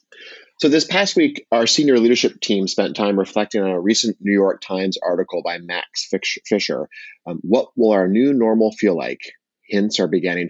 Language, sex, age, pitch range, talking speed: English, male, 30-49, 90-110 Hz, 175 wpm